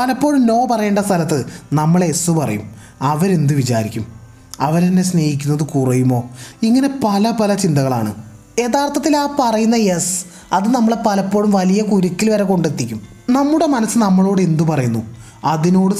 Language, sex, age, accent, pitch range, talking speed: Malayalam, male, 20-39, native, 140-200 Hz, 125 wpm